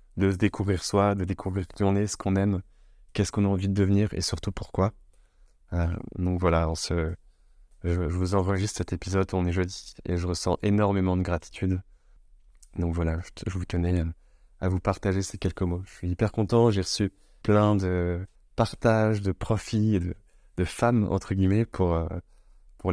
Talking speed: 190 wpm